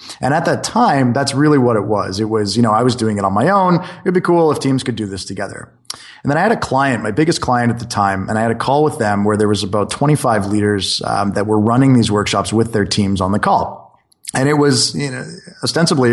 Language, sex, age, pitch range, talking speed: English, male, 20-39, 105-135 Hz, 270 wpm